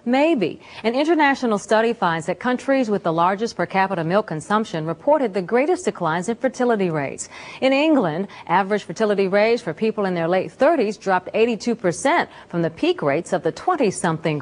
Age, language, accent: 40-59, English, American